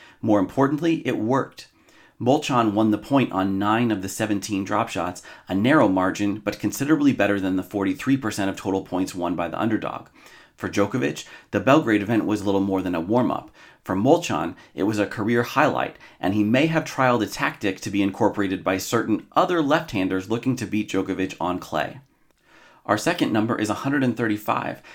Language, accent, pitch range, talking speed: English, American, 95-120 Hz, 180 wpm